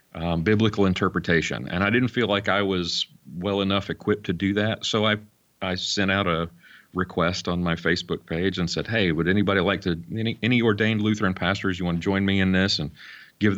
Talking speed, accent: 210 wpm, American